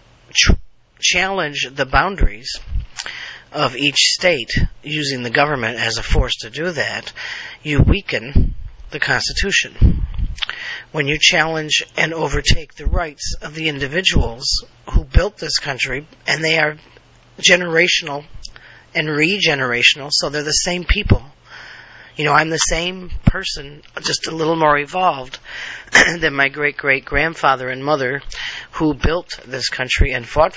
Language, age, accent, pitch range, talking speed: English, 40-59, American, 130-160 Hz, 130 wpm